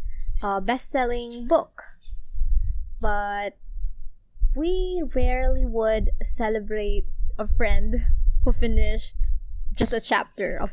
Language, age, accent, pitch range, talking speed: Filipino, 20-39, native, 200-250 Hz, 90 wpm